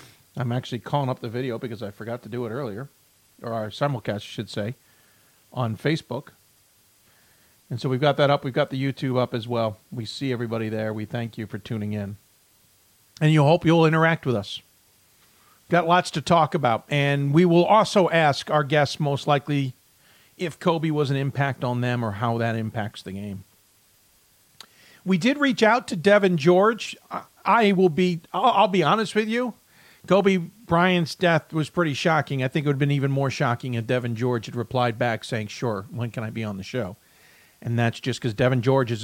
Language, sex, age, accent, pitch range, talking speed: English, male, 50-69, American, 115-175 Hz, 200 wpm